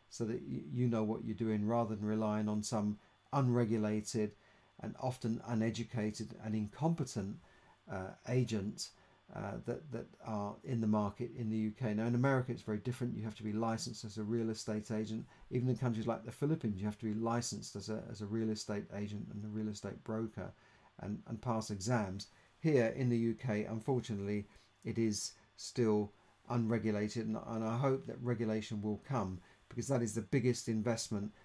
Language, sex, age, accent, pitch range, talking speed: English, male, 40-59, British, 105-120 Hz, 180 wpm